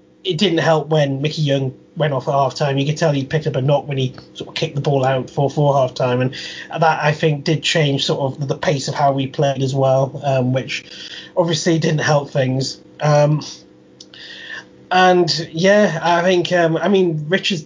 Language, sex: English, male